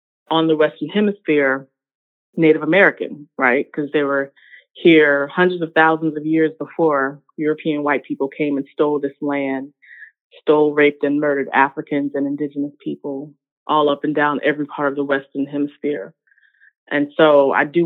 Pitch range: 145-170 Hz